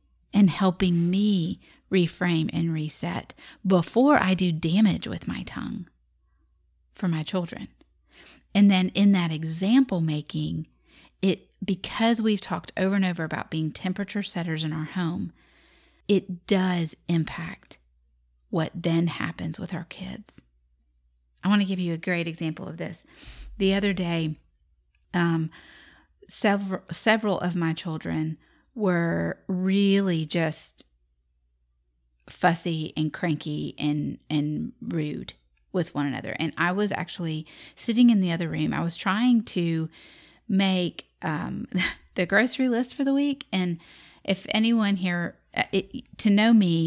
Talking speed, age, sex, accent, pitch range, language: 135 wpm, 30-49, female, American, 155-195 Hz, English